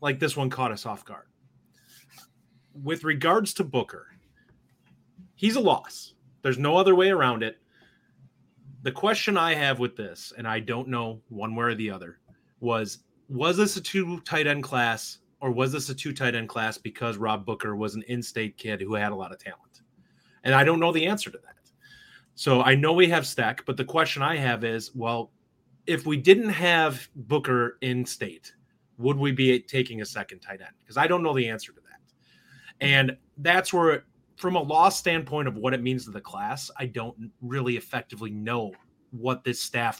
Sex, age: male, 30-49